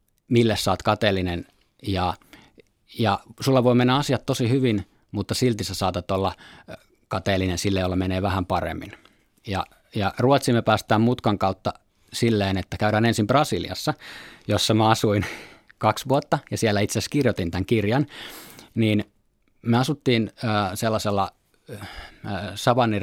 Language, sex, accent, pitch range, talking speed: Finnish, male, native, 95-115 Hz, 125 wpm